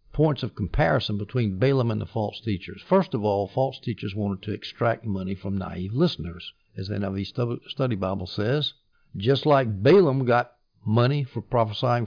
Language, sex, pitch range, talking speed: English, male, 105-135 Hz, 170 wpm